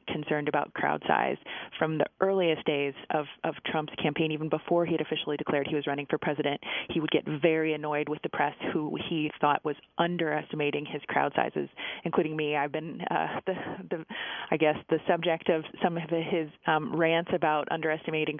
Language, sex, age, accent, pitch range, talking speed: English, female, 20-39, American, 150-170 Hz, 190 wpm